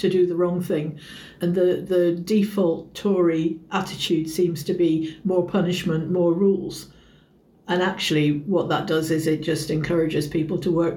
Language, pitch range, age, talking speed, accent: English, 165-190 Hz, 60-79, 165 wpm, British